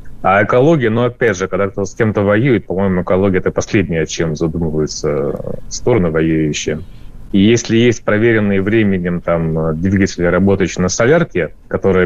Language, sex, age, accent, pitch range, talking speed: Russian, male, 30-49, native, 90-110 Hz, 150 wpm